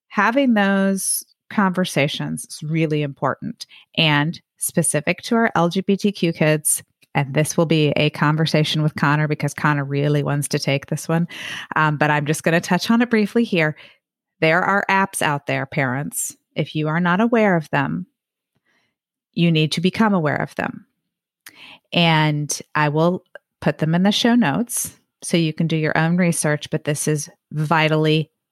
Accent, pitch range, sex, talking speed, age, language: American, 145-175 Hz, female, 165 wpm, 30-49, English